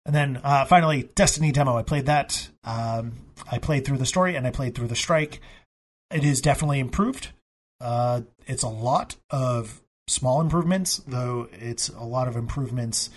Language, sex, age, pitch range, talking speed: English, male, 30-49, 115-140 Hz, 175 wpm